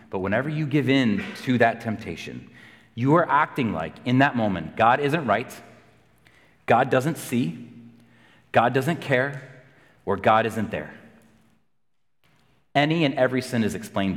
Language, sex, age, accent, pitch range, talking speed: English, male, 30-49, American, 110-145 Hz, 145 wpm